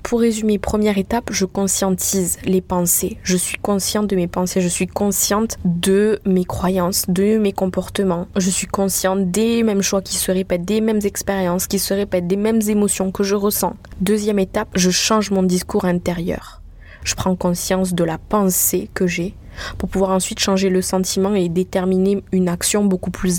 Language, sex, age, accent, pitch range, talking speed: French, female, 20-39, French, 185-205 Hz, 180 wpm